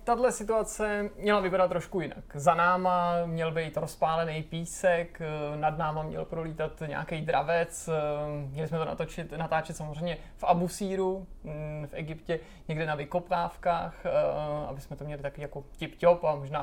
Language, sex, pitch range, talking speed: Czech, male, 155-180 Hz, 150 wpm